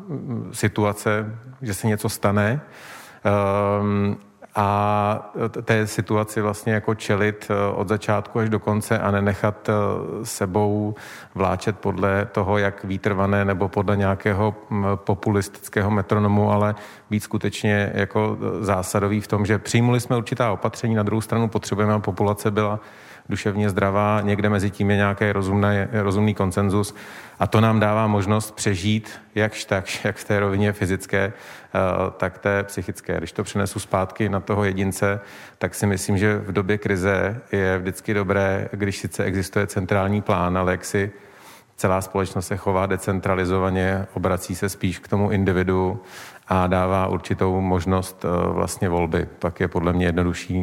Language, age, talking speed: Czech, 40-59, 145 wpm